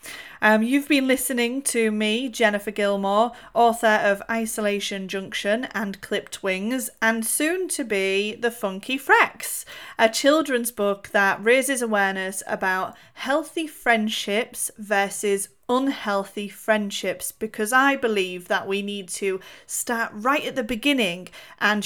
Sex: female